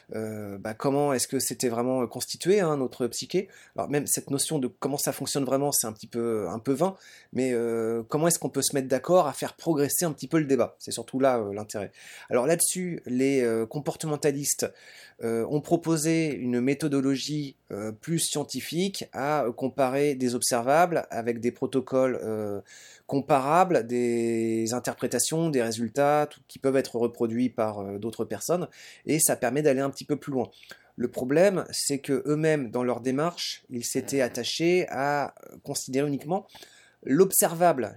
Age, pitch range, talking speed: 20-39, 125-155 Hz, 170 wpm